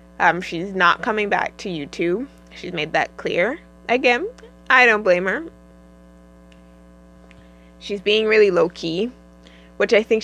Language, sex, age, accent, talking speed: English, female, 20-39, American, 140 wpm